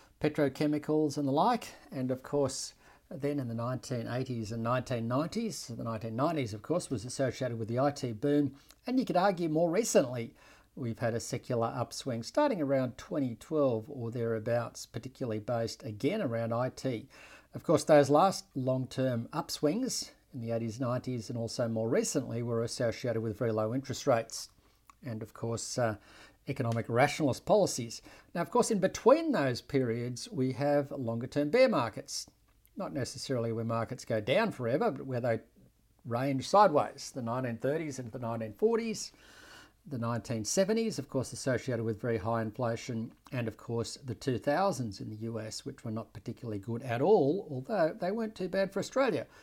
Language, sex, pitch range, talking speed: English, male, 115-145 Hz, 160 wpm